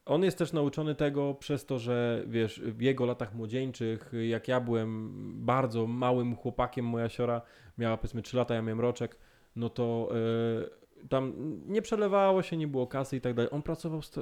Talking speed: 180 wpm